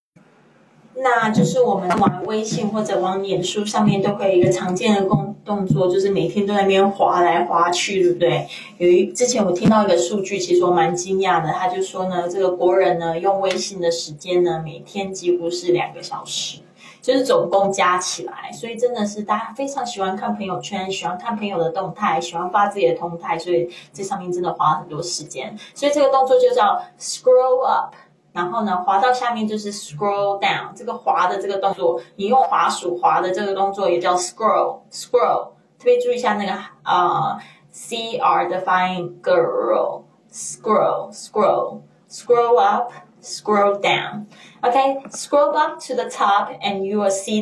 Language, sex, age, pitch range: Chinese, female, 20-39, 180-230 Hz